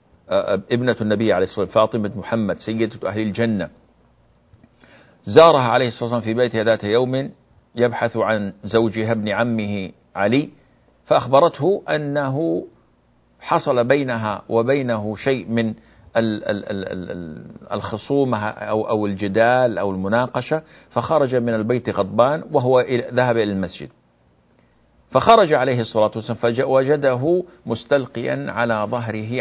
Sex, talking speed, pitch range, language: male, 110 wpm, 105-130 Hz, Arabic